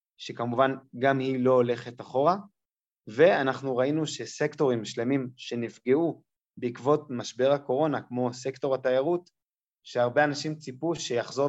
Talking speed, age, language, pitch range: 110 wpm, 20-39, Hebrew, 125-150 Hz